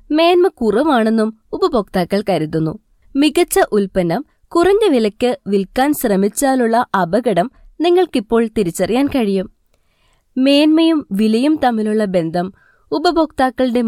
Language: Malayalam